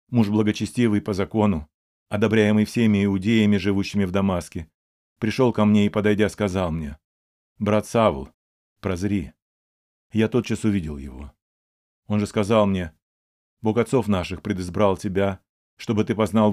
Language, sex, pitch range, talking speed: Russian, male, 85-110 Hz, 130 wpm